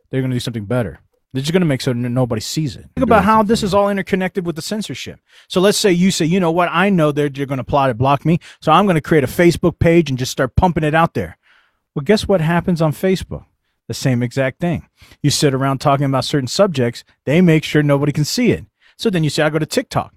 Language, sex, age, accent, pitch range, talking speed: English, male, 40-59, American, 130-180 Hz, 270 wpm